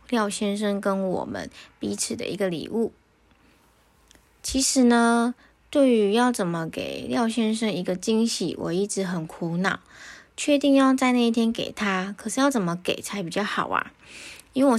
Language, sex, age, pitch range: Chinese, female, 20-39, 190-230 Hz